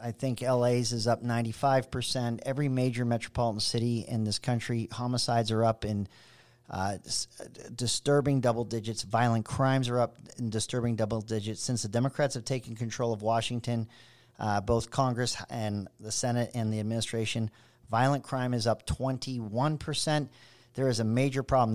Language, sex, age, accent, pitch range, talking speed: English, male, 40-59, American, 115-135 Hz, 155 wpm